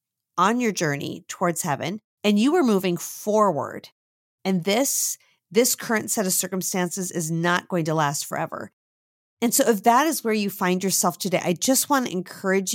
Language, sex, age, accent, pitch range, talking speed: English, female, 40-59, American, 170-210 Hz, 180 wpm